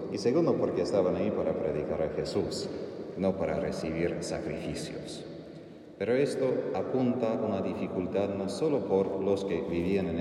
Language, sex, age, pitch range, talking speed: Spanish, male, 30-49, 95-110 Hz, 155 wpm